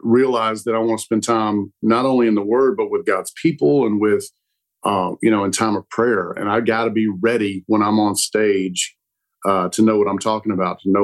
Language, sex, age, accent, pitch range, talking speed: English, male, 50-69, American, 105-120 Hz, 240 wpm